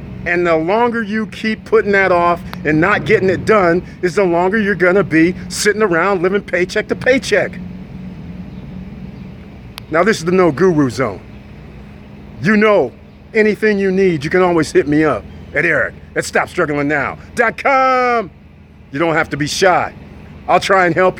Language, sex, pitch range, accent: English, male, 145-195 Hz, American